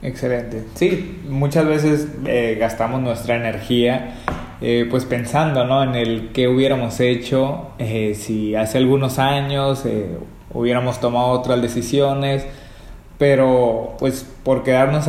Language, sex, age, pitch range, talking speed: Spanish, male, 20-39, 115-130 Hz, 125 wpm